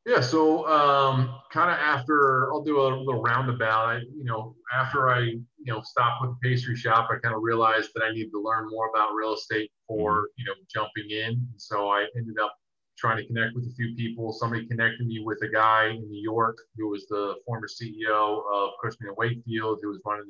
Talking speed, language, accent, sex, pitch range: 215 wpm, English, American, male, 105-125 Hz